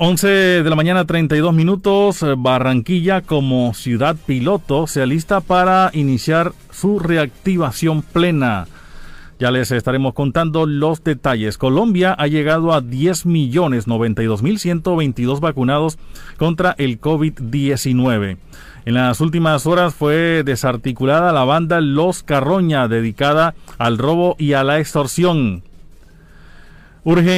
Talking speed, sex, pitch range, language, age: 110 wpm, male, 130-175 Hz, Spanish, 40-59